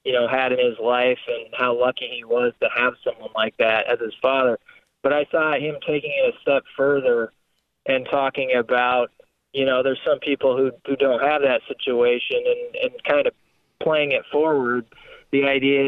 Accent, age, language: American, 20-39, English